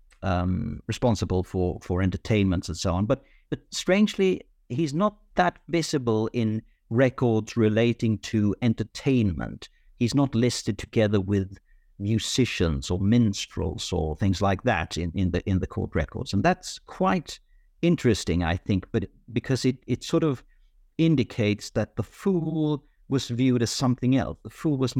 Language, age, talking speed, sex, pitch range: English, 50-69, 150 wpm, male, 95-125 Hz